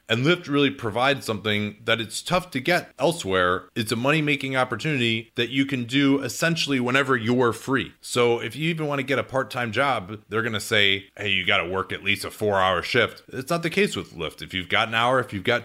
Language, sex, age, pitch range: English, male, 30-49, 100-130 Hz